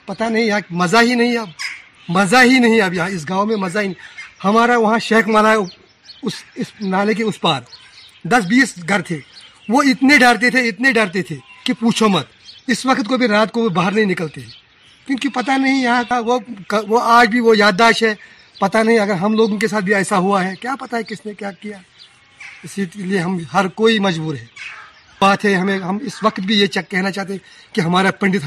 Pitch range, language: 195-235 Hz, Urdu